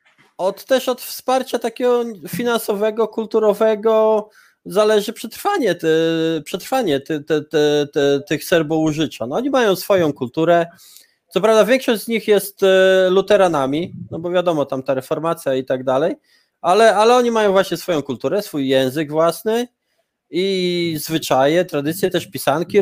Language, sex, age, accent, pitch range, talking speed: Polish, male, 20-39, native, 165-225 Hz, 140 wpm